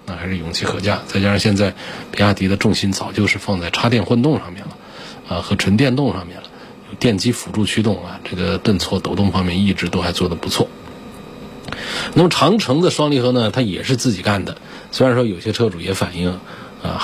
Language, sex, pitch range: Chinese, male, 90-115 Hz